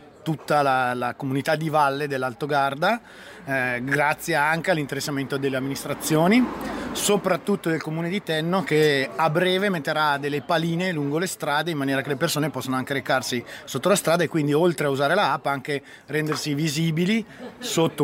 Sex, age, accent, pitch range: male, 30-49, native, 140-170 Hz